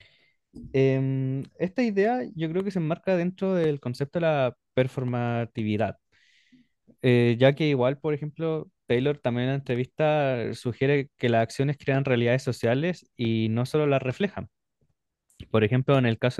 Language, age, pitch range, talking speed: Spanish, 20-39, 115-135 Hz, 155 wpm